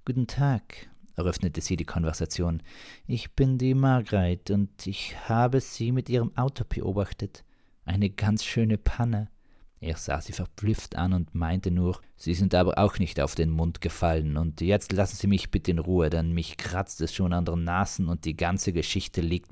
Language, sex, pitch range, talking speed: German, male, 85-125 Hz, 185 wpm